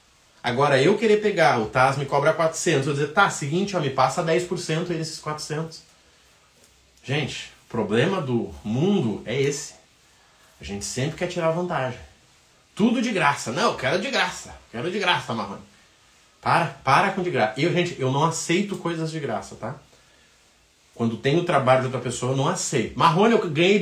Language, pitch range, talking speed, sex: Portuguese, 115-180 Hz, 185 wpm, male